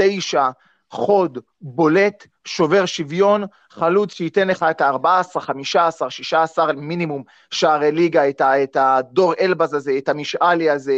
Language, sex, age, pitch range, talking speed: Hebrew, male, 30-49, 150-195 Hz, 125 wpm